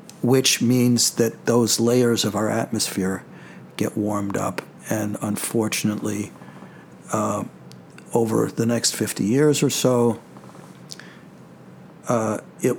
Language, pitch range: English, 110-145 Hz